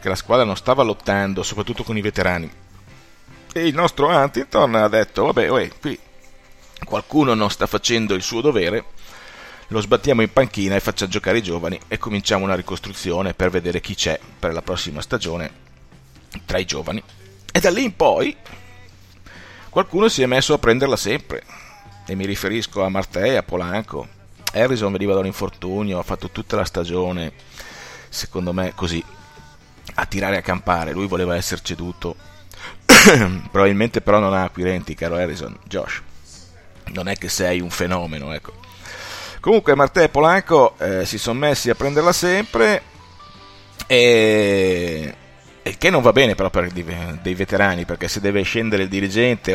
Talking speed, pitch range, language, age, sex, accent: 160 wpm, 90-105 Hz, Italian, 30-49, male, native